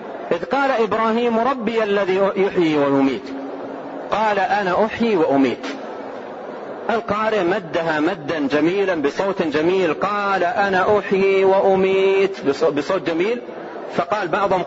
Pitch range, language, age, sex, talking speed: 170-215 Hz, Arabic, 40-59, male, 100 wpm